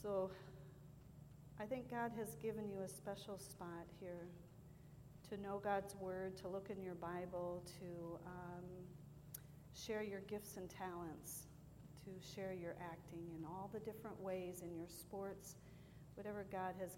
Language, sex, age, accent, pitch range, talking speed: English, female, 50-69, American, 170-205 Hz, 150 wpm